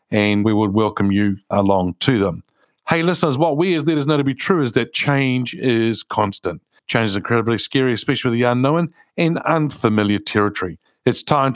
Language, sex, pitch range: English, male, 115-160 Hz